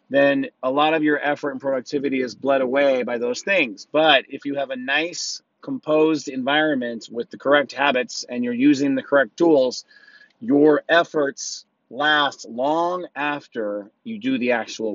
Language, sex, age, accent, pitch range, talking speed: English, male, 30-49, American, 125-165 Hz, 165 wpm